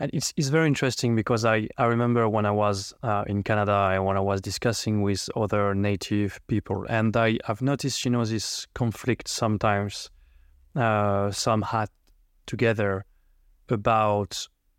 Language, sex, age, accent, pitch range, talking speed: French, male, 20-39, French, 105-120 Hz, 150 wpm